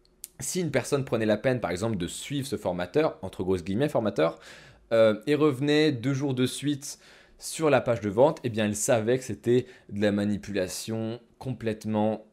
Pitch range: 105-140 Hz